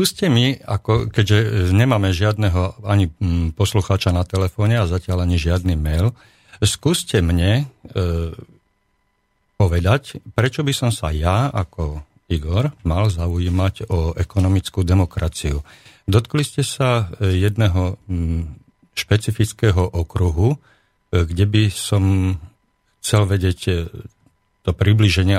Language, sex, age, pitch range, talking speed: Slovak, male, 50-69, 90-110 Hz, 110 wpm